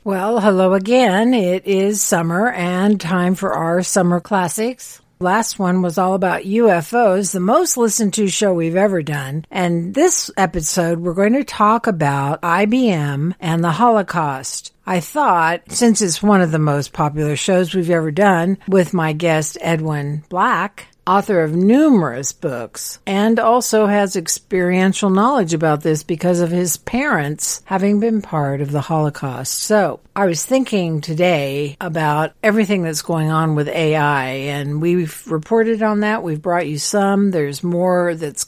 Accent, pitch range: American, 160-205 Hz